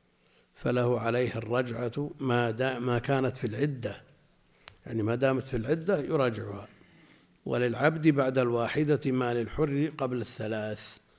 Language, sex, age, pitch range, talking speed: Arabic, male, 60-79, 110-145 Hz, 120 wpm